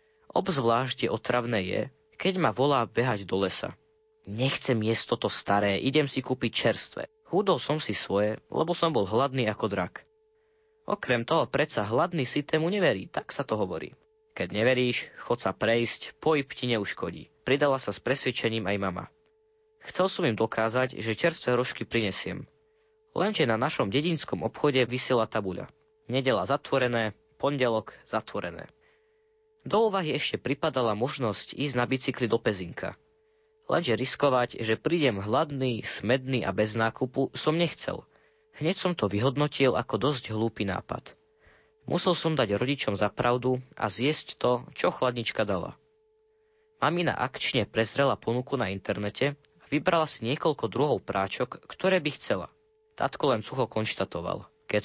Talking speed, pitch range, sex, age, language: 145 wpm, 115-160 Hz, male, 20-39, Slovak